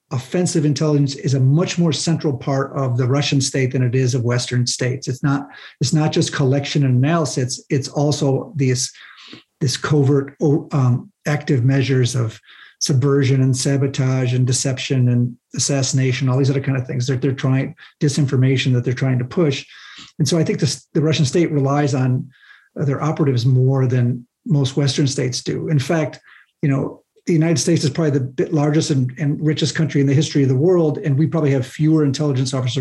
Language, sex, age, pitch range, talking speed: English, male, 50-69, 130-150 Hz, 190 wpm